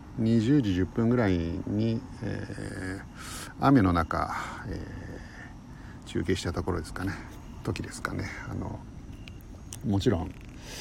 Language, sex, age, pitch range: Japanese, male, 50-69, 90-110 Hz